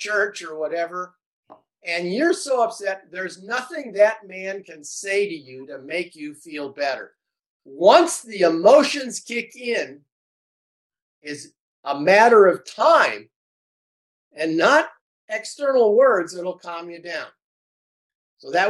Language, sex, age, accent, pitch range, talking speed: English, male, 50-69, American, 150-235 Hz, 130 wpm